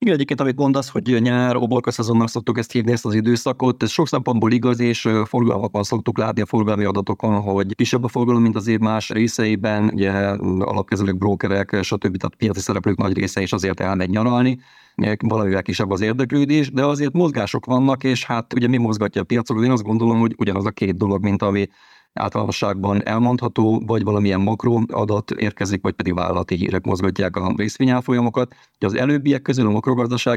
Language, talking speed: Hungarian, 175 wpm